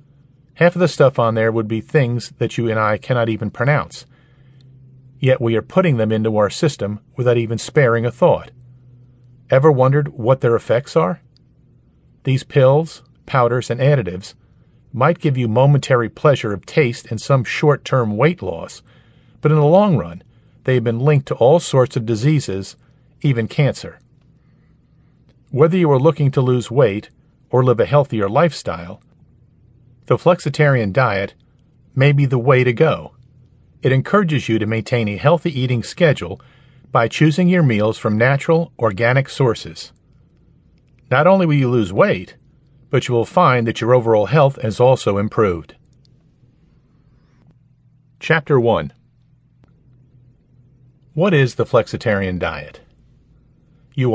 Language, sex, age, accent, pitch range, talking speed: English, male, 50-69, American, 120-145 Hz, 145 wpm